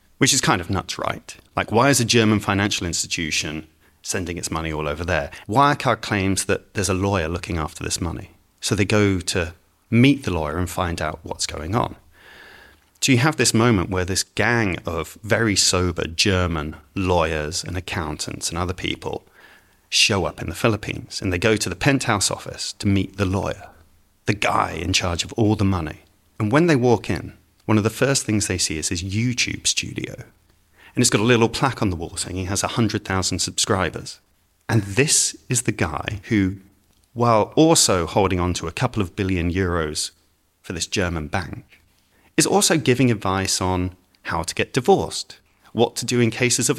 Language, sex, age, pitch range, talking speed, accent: English, male, 30-49, 90-115 Hz, 190 wpm, British